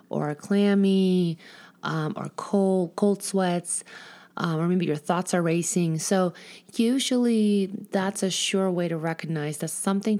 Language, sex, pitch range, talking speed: English, female, 170-210 Hz, 145 wpm